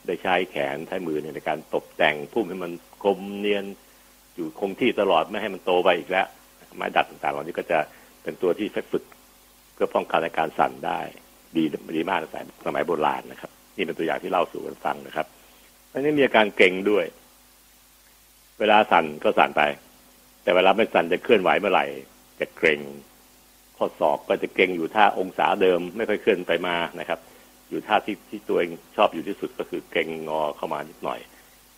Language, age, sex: Thai, 60-79, male